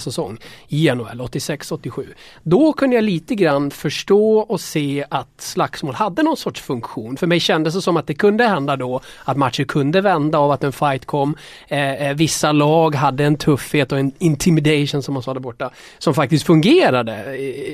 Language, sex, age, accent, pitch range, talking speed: English, male, 30-49, Swedish, 130-175 Hz, 190 wpm